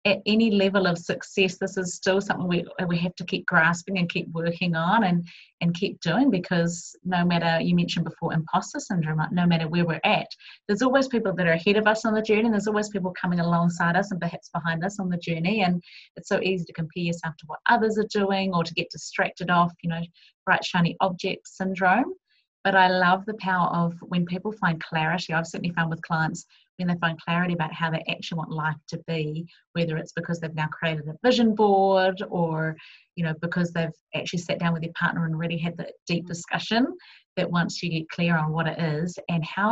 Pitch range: 165-190 Hz